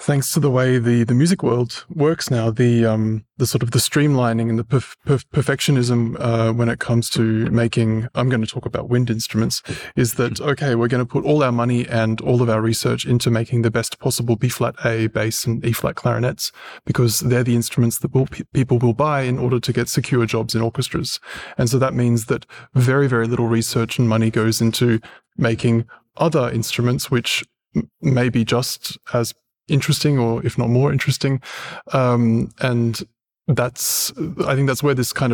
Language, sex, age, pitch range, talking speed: English, male, 20-39, 115-135 Hz, 200 wpm